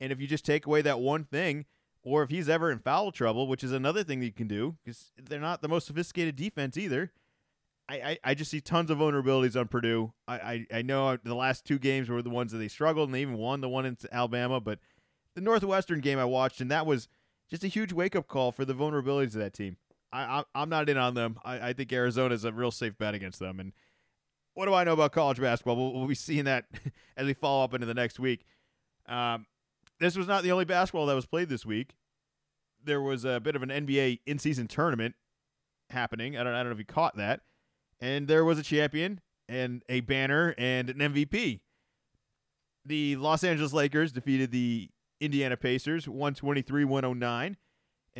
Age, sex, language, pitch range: 30-49, male, English, 125-155 Hz